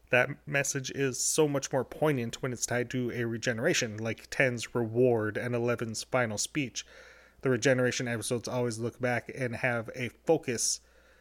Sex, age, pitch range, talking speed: male, 30-49, 120-135 Hz, 160 wpm